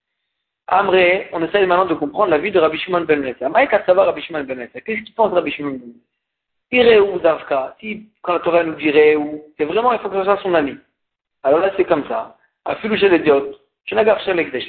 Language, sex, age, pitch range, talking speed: French, male, 50-69, 160-215 Hz, 195 wpm